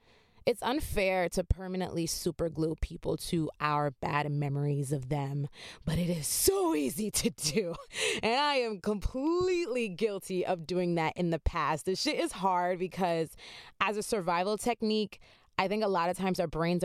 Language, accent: English, American